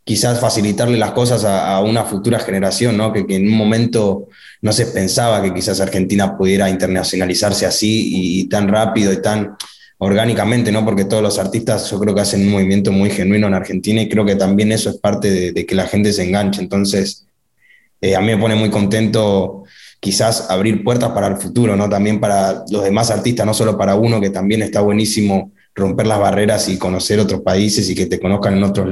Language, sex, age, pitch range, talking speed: Spanish, male, 20-39, 95-105 Hz, 205 wpm